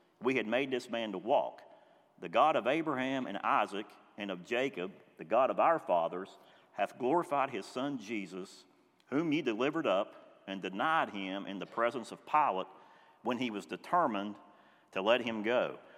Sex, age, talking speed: male, 50-69, 175 wpm